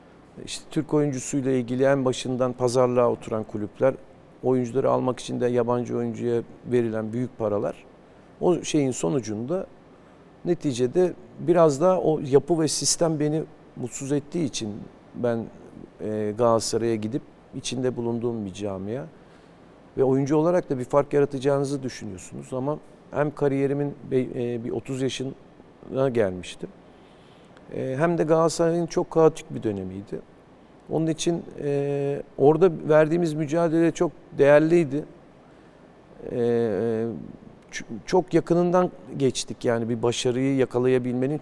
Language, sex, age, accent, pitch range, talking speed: Turkish, male, 50-69, native, 120-155 Hz, 110 wpm